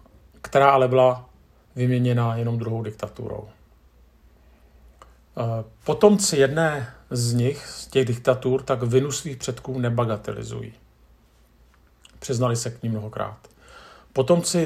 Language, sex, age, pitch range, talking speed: Czech, male, 50-69, 100-130 Hz, 100 wpm